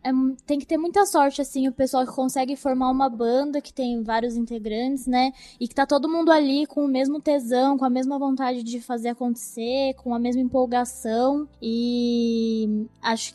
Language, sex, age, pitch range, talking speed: Portuguese, female, 10-29, 225-265 Hz, 190 wpm